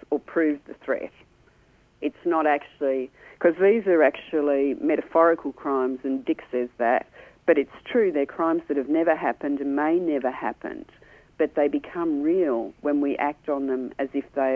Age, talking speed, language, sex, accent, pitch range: 50-69, 175 wpm, English, female, Australian, 135-165 Hz